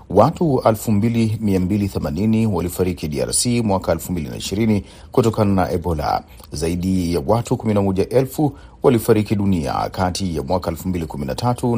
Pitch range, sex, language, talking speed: 90-115 Hz, male, Swahili, 95 wpm